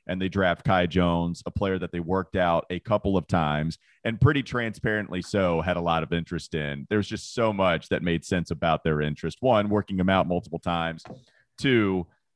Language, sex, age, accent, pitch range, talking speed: English, male, 30-49, American, 90-125 Hz, 210 wpm